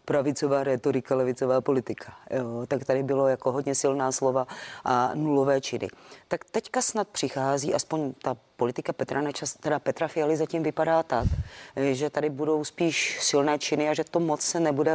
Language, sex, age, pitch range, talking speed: Czech, female, 30-49, 125-150 Hz, 160 wpm